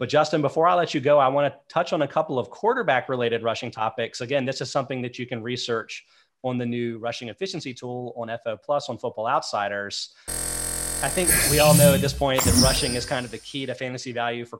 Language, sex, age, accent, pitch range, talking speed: English, male, 30-49, American, 115-145 Hz, 235 wpm